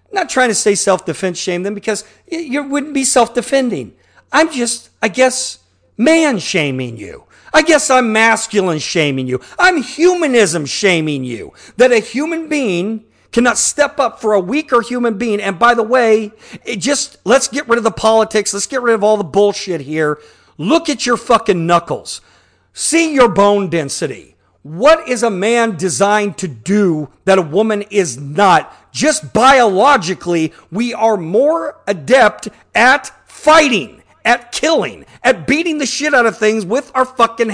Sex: male